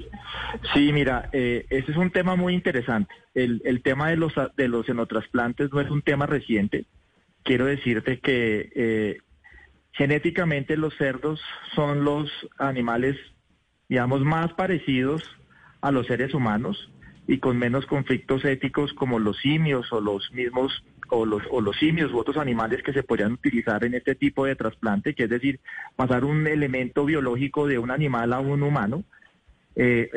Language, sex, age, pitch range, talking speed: Spanish, male, 30-49, 120-150 Hz, 160 wpm